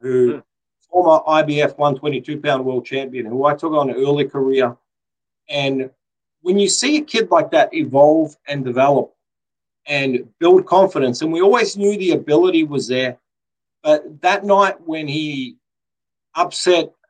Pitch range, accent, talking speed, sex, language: 140-190 Hz, Australian, 145 wpm, male, Filipino